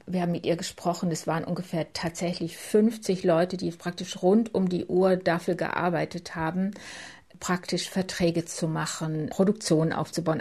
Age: 50-69